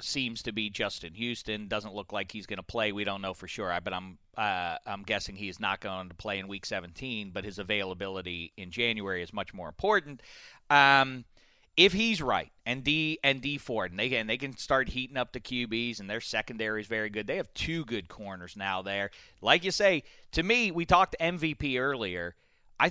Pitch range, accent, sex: 110-165 Hz, American, male